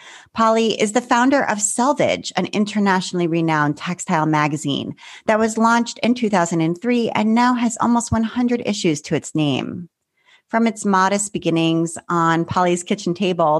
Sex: female